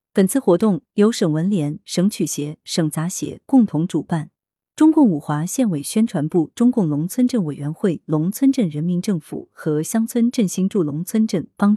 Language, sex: Chinese, female